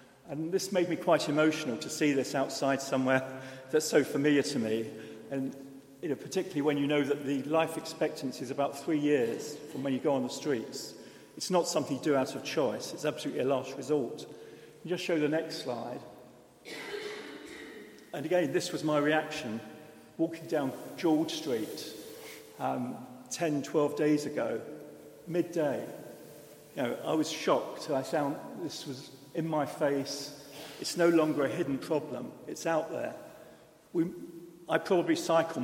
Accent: British